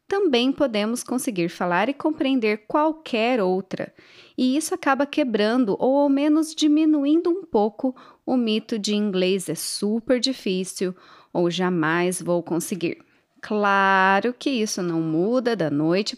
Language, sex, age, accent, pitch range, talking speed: Portuguese, female, 20-39, Brazilian, 190-275 Hz, 135 wpm